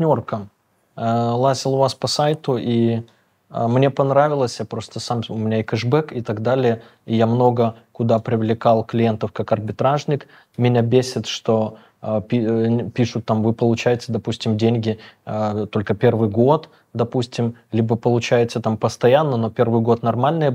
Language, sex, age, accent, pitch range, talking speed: Russian, male, 20-39, native, 115-130 Hz, 140 wpm